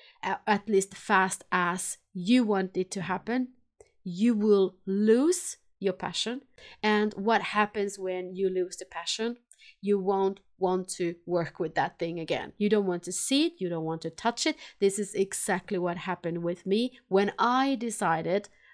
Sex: female